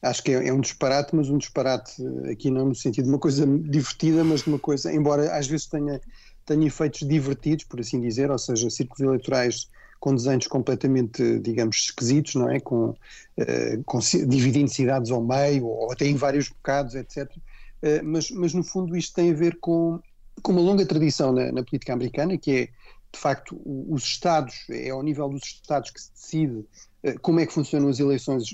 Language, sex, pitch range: Portuguese, male, 130-155 Hz